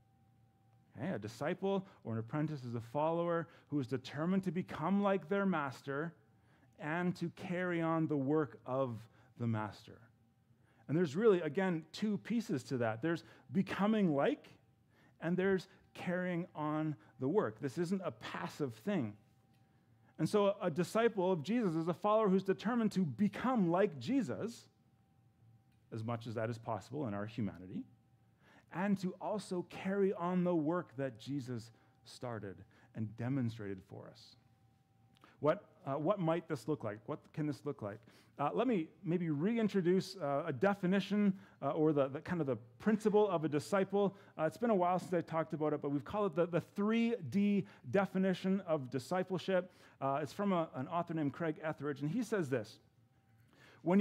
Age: 30-49